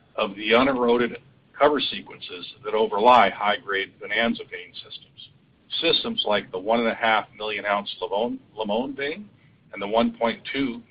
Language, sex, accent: English, male, American